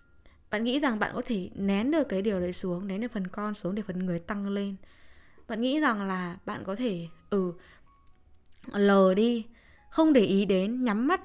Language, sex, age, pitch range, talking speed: Vietnamese, female, 20-39, 170-225 Hz, 210 wpm